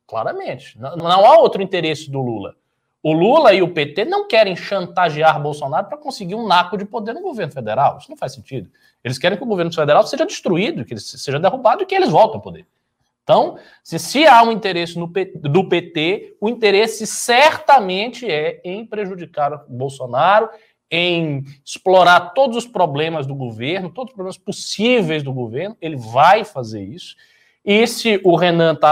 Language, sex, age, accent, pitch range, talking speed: Portuguese, male, 20-39, Brazilian, 130-200 Hz, 180 wpm